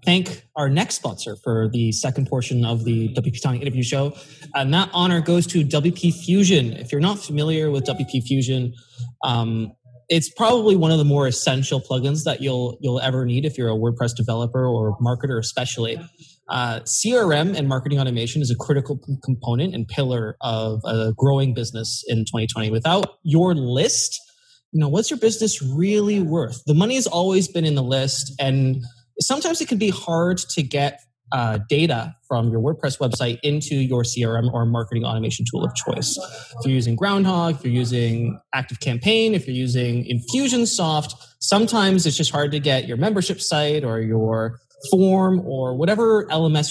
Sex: male